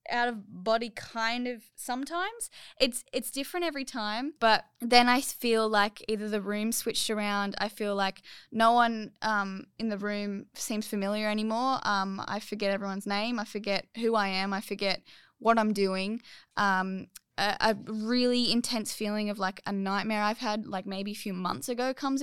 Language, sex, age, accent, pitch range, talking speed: English, female, 10-29, Australian, 195-225 Hz, 180 wpm